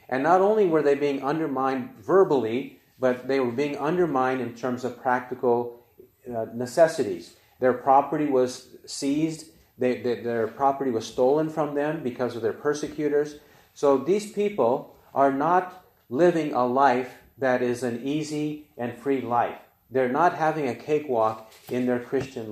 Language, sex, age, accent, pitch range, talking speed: English, male, 40-59, American, 125-155 Hz, 150 wpm